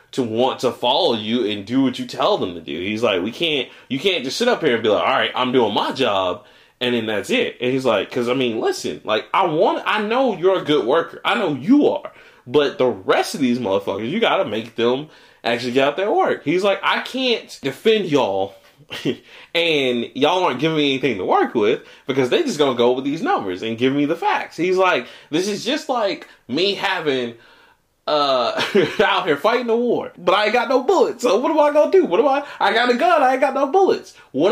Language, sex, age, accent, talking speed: English, male, 20-39, American, 245 wpm